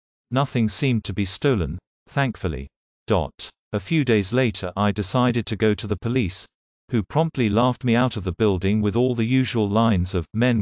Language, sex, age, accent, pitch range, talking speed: English, male, 40-59, British, 95-120 Hz, 180 wpm